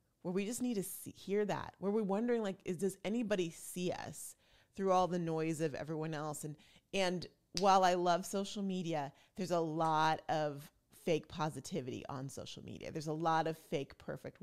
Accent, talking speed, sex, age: American, 190 wpm, female, 30-49